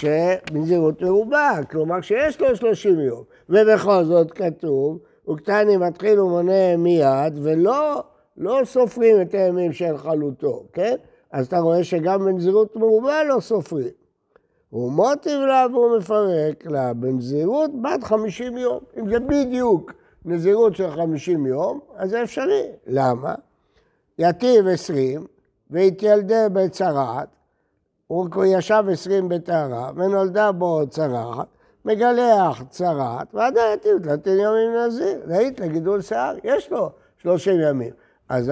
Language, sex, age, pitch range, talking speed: Hebrew, male, 60-79, 165-230 Hz, 115 wpm